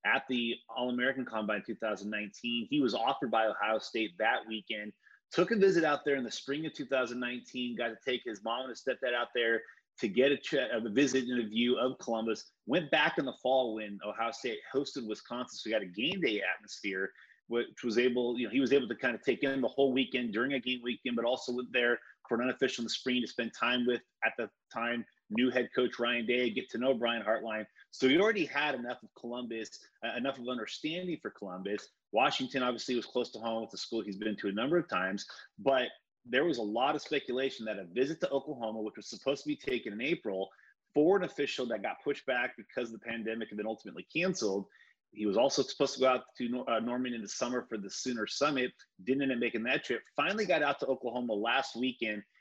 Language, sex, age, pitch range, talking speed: English, male, 30-49, 115-130 Hz, 230 wpm